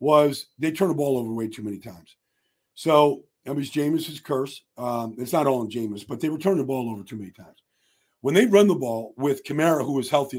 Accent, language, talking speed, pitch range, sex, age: American, English, 235 wpm, 125-160 Hz, male, 50-69